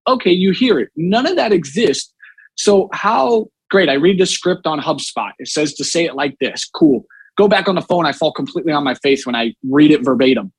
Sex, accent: male, American